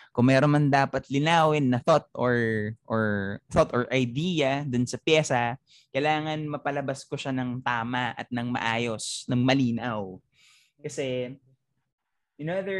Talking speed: 125 wpm